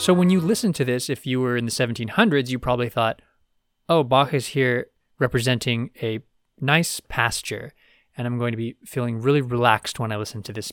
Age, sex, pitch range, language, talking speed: 20-39, male, 115-140 Hz, English, 200 wpm